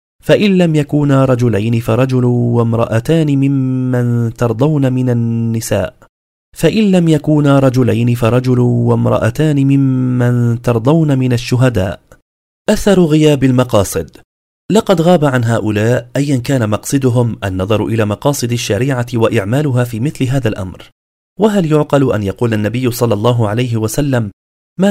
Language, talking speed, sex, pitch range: Arabic, 120 wpm, male, 115-150 Hz